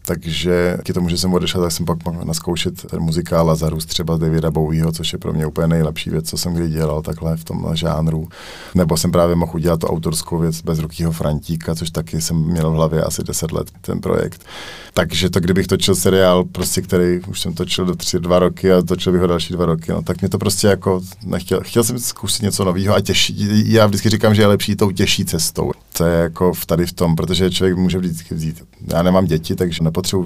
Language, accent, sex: Czech, native, male